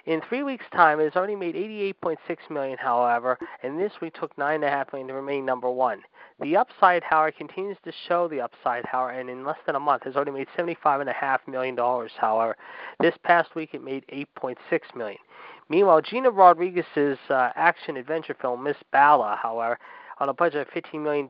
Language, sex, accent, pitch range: English, male, American, 130-170 Hz